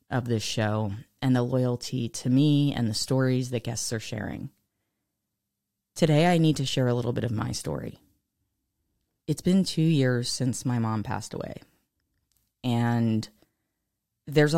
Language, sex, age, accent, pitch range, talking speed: English, female, 20-39, American, 115-145 Hz, 150 wpm